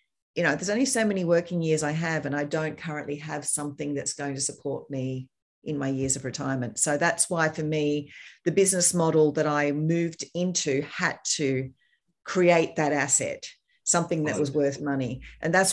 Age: 40-59